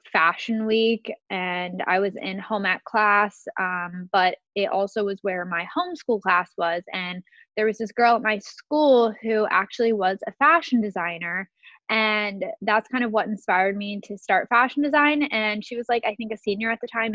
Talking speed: 195 wpm